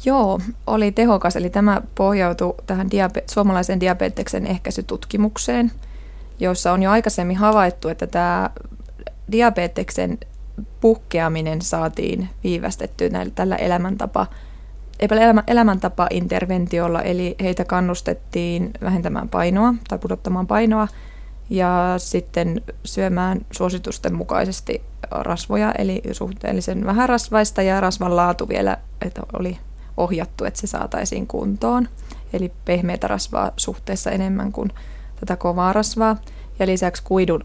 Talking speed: 105 wpm